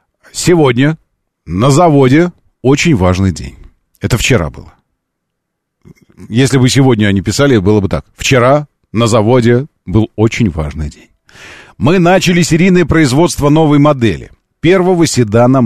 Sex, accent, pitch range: male, native, 110-175 Hz